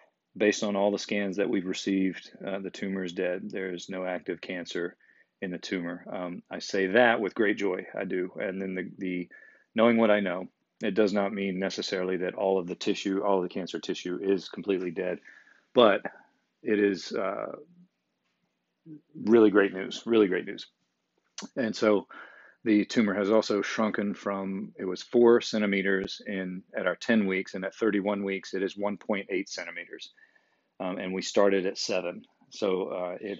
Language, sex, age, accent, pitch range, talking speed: English, male, 40-59, American, 95-110 Hz, 175 wpm